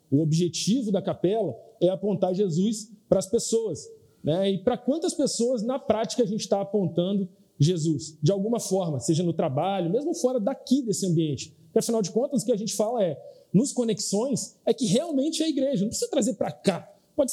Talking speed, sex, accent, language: 195 wpm, male, Brazilian, Portuguese